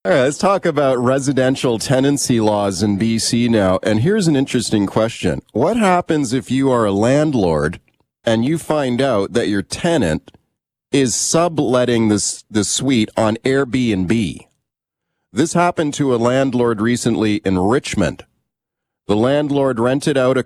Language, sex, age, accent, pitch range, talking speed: English, male, 40-59, American, 115-155 Hz, 150 wpm